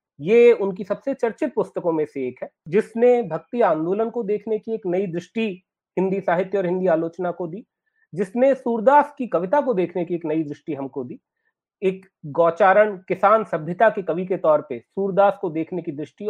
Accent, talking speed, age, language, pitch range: native, 190 wpm, 40-59, Hindi, 165-215 Hz